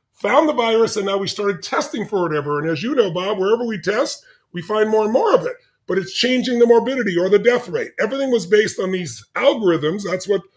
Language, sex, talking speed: English, female, 240 wpm